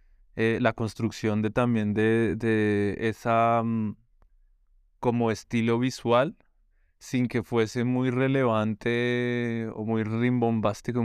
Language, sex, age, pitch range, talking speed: Spanish, male, 20-39, 110-120 Hz, 110 wpm